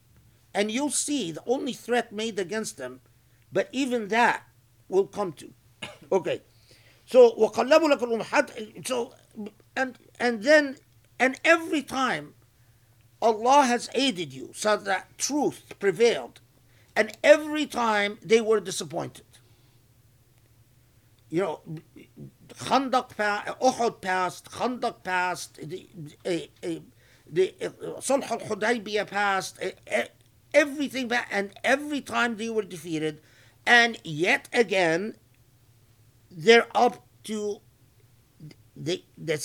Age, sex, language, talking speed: 50-69, male, English, 105 wpm